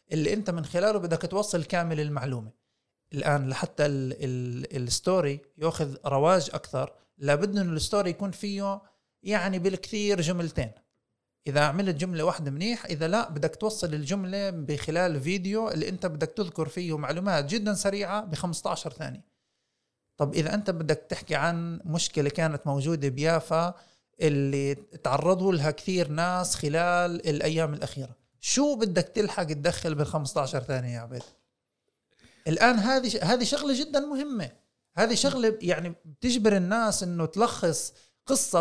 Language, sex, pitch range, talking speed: Arabic, male, 150-200 Hz, 135 wpm